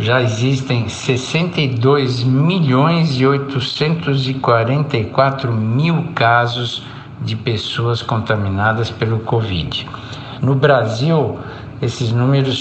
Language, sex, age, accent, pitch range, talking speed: Portuguese, male, 60-79, Brazilian, 110-135 Hz, 60 wpm